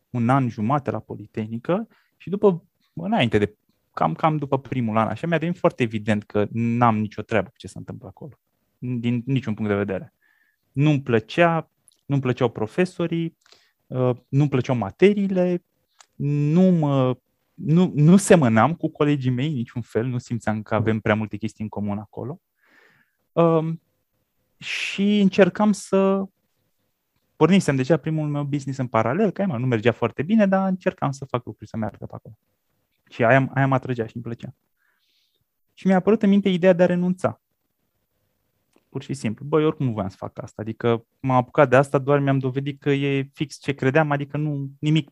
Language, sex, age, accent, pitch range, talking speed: Romanian, male, 20-39, native, 115-160 Hz, 175 wpm